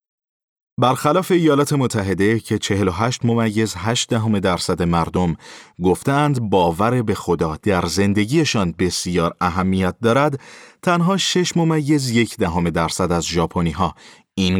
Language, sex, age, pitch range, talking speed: Persian, male, 30-49, 85-120 Hz, 115 wpm